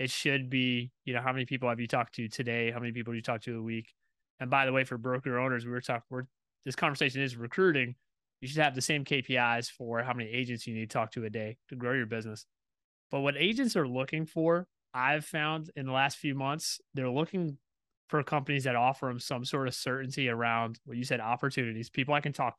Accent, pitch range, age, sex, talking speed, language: American, 125-150 Hz, 20-39, male, 240 wpm, English